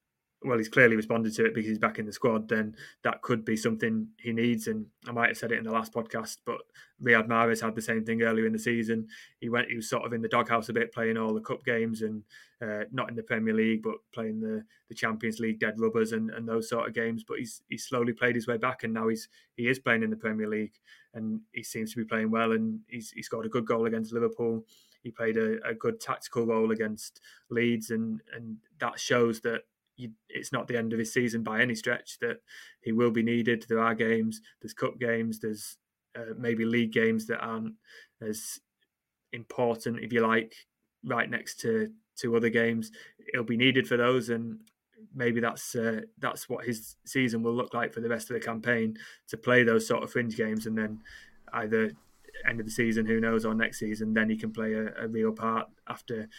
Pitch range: 110-120 Hz